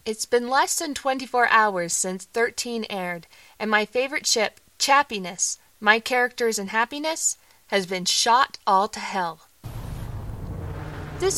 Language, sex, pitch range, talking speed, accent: English, female, 200-260 Hz, 130 wpm, American